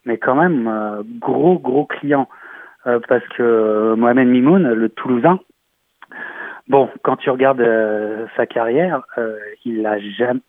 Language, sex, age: French, male, 30-49